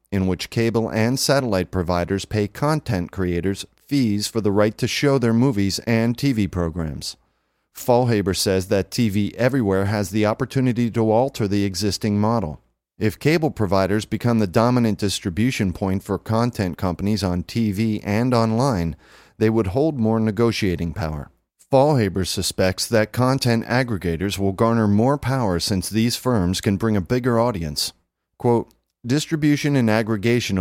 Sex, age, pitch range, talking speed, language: male, 40-59, 95-115 Hz, 145 wpm, English